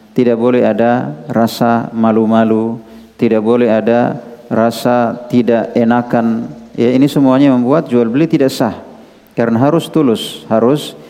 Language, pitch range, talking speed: Indonesian, 110-125 Hz, 125 wpm